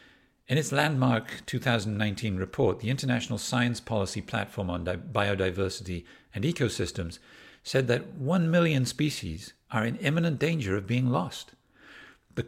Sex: male